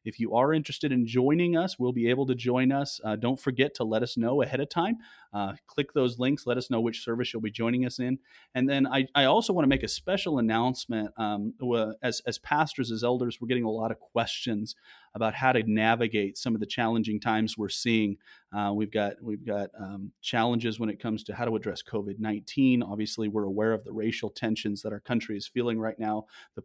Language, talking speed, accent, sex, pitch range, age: English, 225 wpm, American, male, 110-125 Hz, 30-49